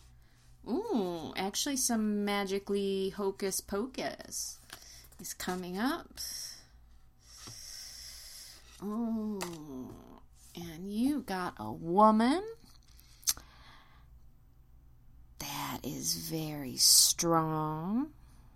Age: 30-49